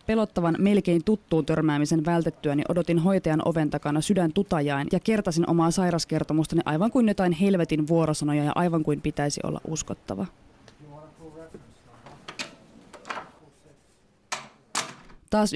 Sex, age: female, 20-39